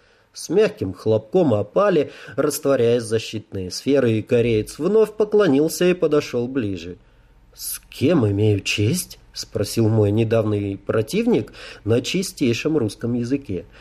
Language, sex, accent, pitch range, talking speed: Russian, male, native, 110-155 Hz, 115 wpm